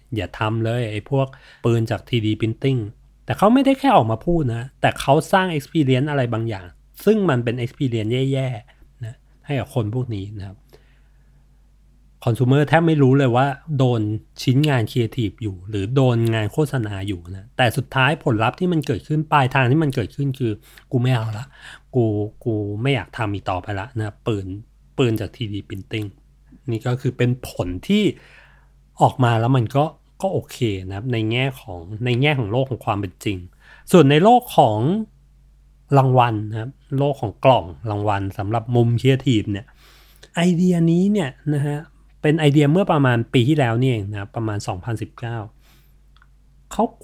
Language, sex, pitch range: Thai, male, 110-140 Hz